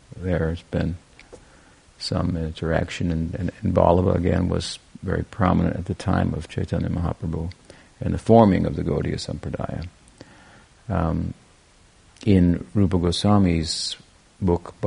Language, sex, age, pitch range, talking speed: English, male, 50-69, 85-95 Hz, 125 wpm